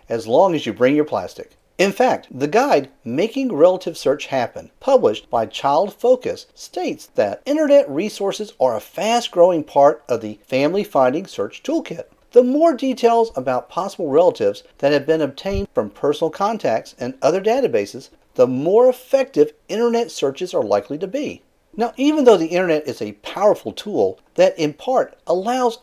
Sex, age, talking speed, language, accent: male, 50-69, 165 wpm, English, American